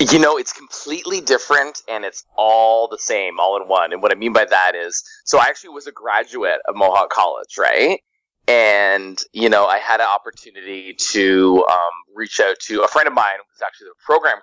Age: 20-39